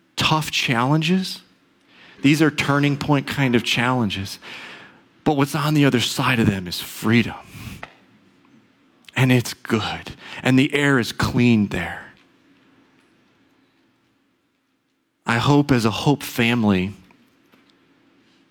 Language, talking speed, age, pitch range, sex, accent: English, 110 wpm, 40-59, 115-145 Hz, male, American